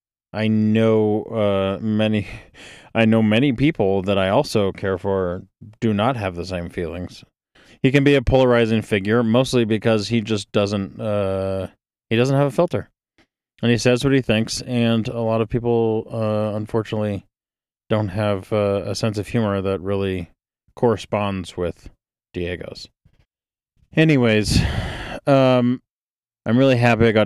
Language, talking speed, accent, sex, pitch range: English, 150 wpm, American, male, 100-120 Hz